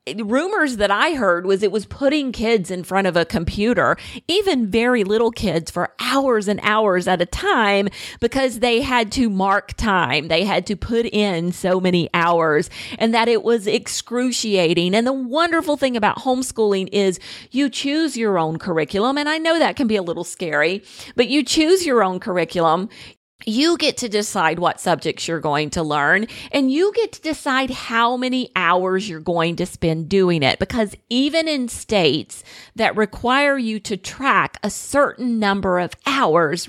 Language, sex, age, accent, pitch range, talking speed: English, female, 40-59, American, 170-245 Hz, 180 wpm